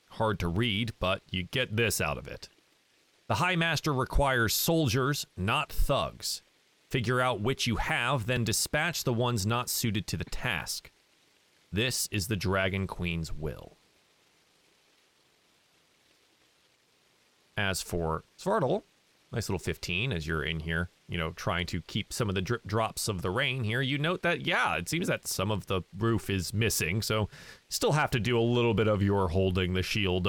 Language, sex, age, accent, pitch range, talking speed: English, male, 30-49, American, 90-120 Hz, 170 wpm